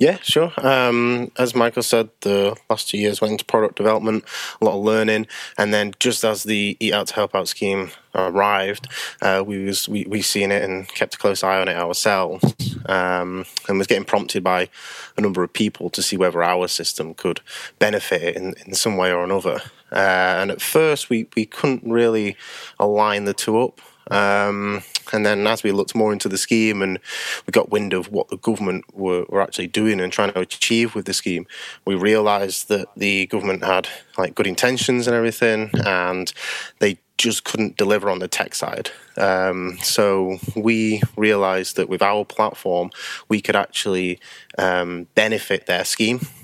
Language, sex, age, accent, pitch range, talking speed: English, male, 20-39, British, 95-110 Hz, 185 wpm